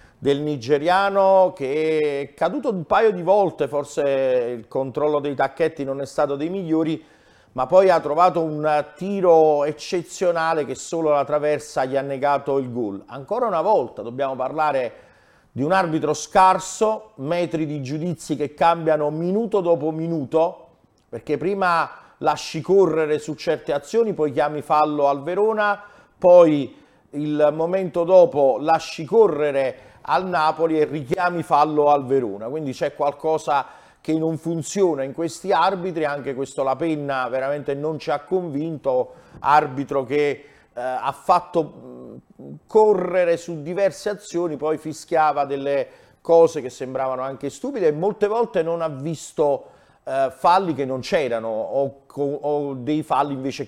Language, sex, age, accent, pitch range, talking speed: Italian, male, 40-59, native, 140-175 Hz, 140 wpm